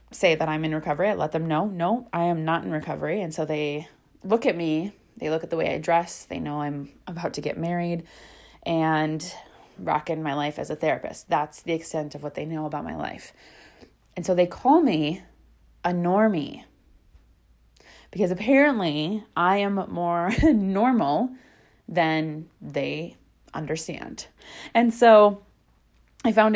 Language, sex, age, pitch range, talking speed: English, female, 20-39, 155-200 Hz, 165 wpm